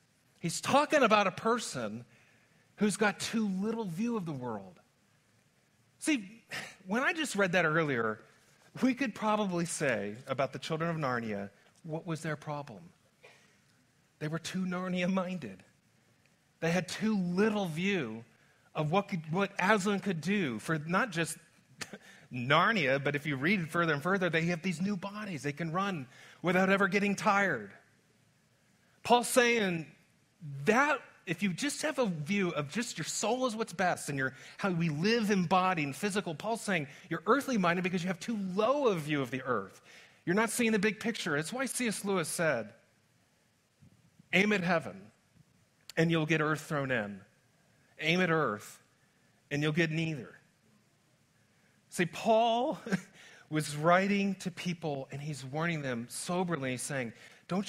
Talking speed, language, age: 160 wpm, English, 40-59